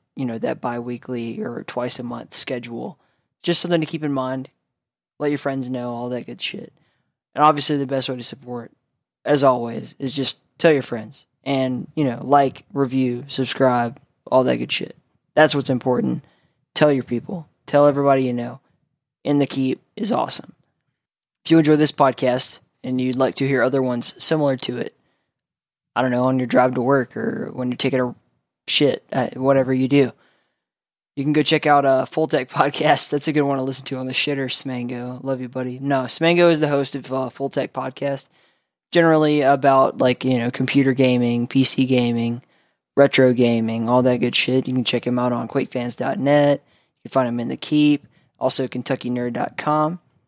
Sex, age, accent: male, 20-39, American